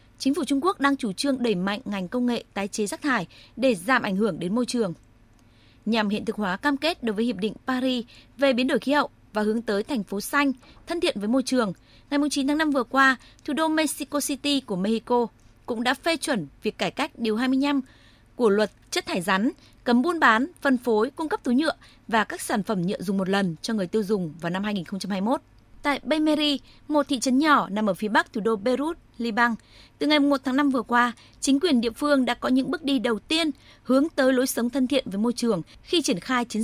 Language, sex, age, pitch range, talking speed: Vietnamese, female, 20-39, 220-280 Hz, 235 wpm